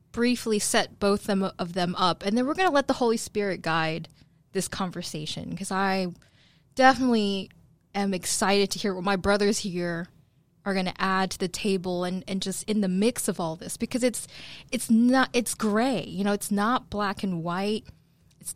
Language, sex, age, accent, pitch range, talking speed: English, female, 20-39, American, 180-230 Hz, 190 wpm